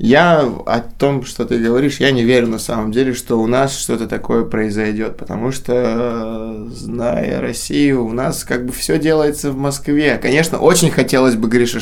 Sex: male